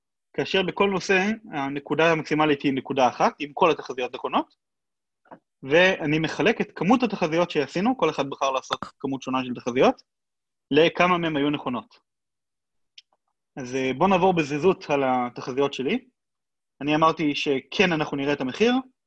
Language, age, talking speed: Hebrew, 20-39, 140 wpm